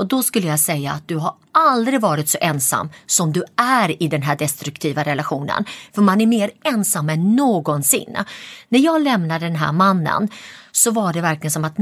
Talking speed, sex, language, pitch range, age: 200 wpm, female, English, 160-235 Hz, 30-49